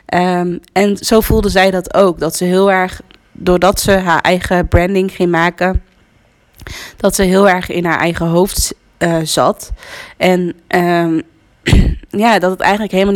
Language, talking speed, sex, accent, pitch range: Dutch, 160 wpm, female, Dutch, 170-195 Hz